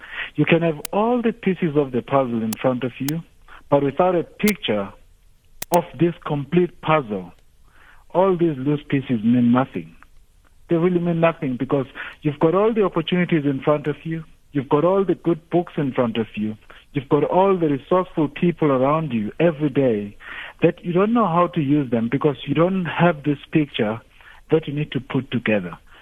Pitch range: 135-175 Hz